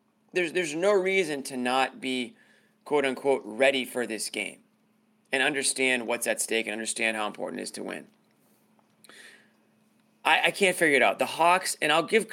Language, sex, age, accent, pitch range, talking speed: English, male, 30-49, American, 110-165 Hz, 175 wpm